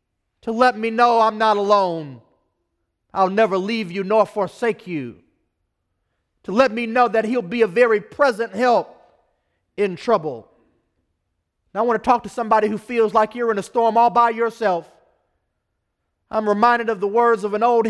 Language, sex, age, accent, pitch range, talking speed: English, male, 40-59, American, 190-250 Hz, 175 wpm